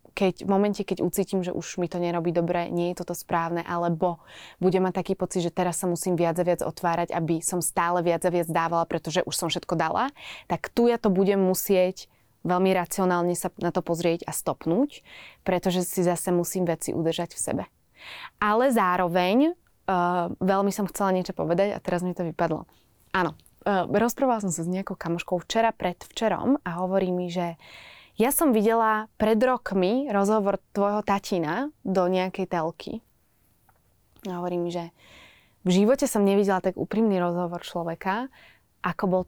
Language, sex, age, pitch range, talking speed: Slovak, female, 20-39, 175-205 Hz, 170 wpm